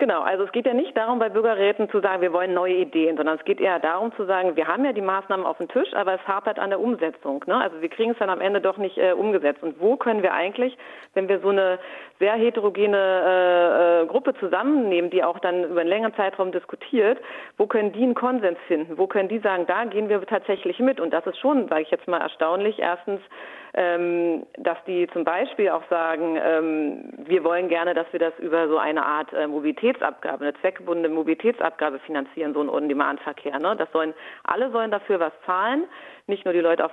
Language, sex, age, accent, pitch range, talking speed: German, female, 40-59, German, 165-210 Hz, 215 wpm